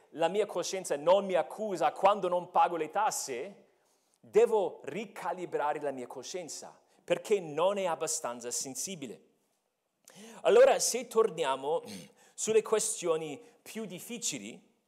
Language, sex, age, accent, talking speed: Italian, male, 40-59, native, 115 wpm